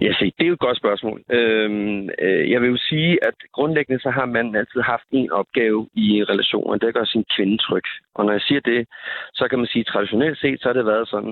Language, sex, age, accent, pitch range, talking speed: Danish, male, 30-49, native, 105-135 Hz, 240 wpm